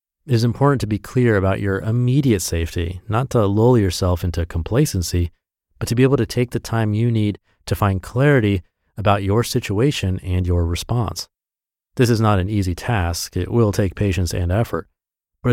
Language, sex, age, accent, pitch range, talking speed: English, male, 30-49, American, 95-120 Hz, 185 wpm